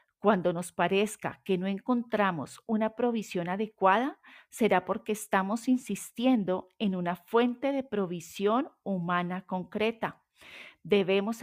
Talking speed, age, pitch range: 110 wpm, 40-59, 175-220 Hz